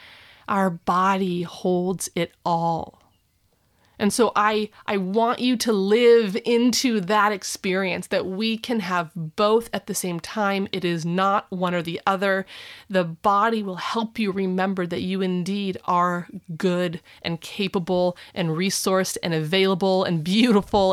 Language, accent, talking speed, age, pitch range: English, American, 145 wpm, 30-49, 185-230 Hz